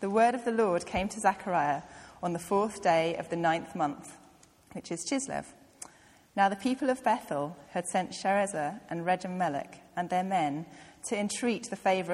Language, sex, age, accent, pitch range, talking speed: English, female, 30-49, British, 175-220 Hz, 180 wpm